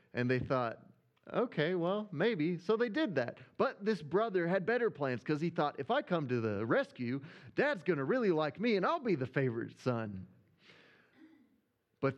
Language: English